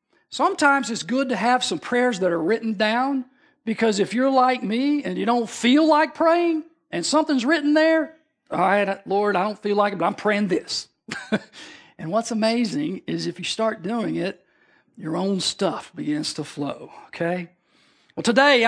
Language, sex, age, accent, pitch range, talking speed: English, male, 50-69, American, 210-295 Hz, 180 wpm